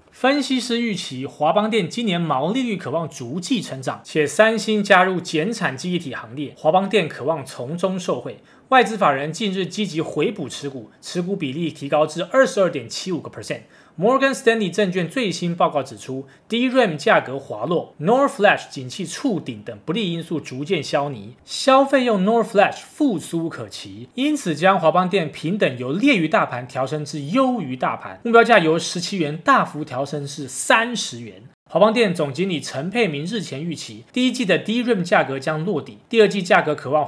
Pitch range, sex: 145-210 Hz, male